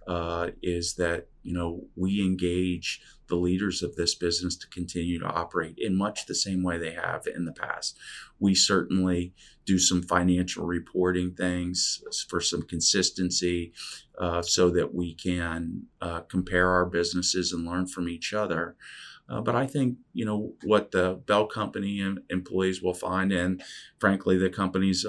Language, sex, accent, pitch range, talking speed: English, male, American, 85-95 Hz, 160 wpm